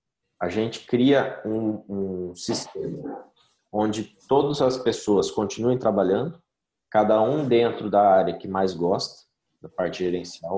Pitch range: 95-130 Hz